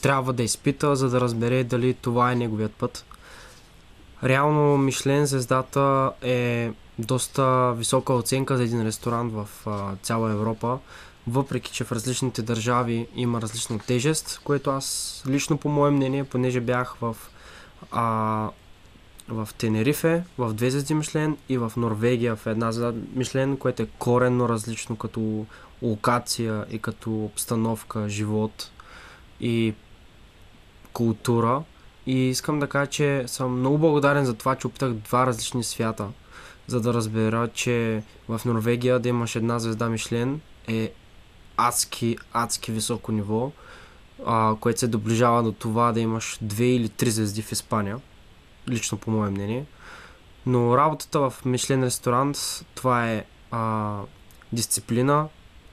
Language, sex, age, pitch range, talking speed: Bulgarian, male, 20-39, 110-130 Hz, 135 wpm